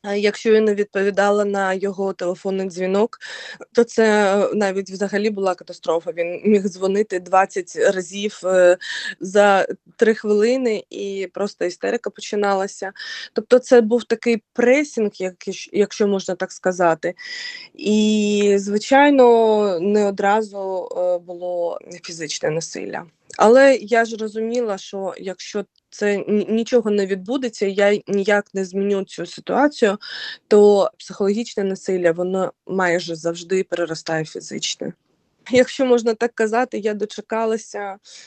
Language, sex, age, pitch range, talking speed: Ukrainian, female, 20-39, 190-230 Hz, 115 wpm